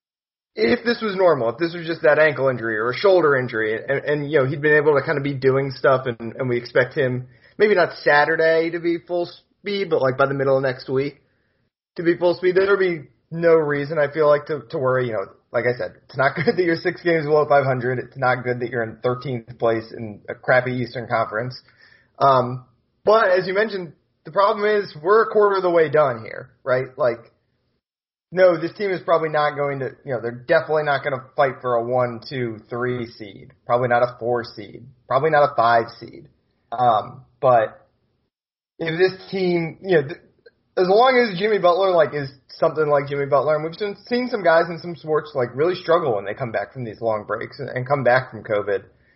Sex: male